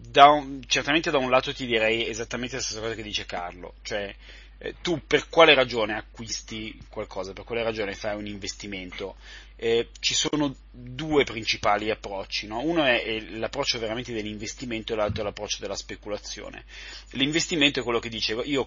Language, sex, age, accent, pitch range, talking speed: Italian, male, 30-49, native, 105-125 Hz, 165 wpm